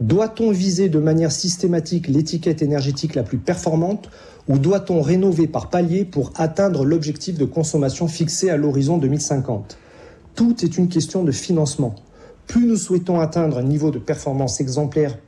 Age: 40-59